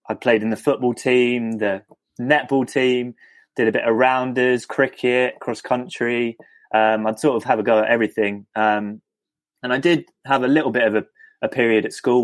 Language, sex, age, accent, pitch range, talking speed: English, male, 20-39, British, 110-135 Hz, 190 wpm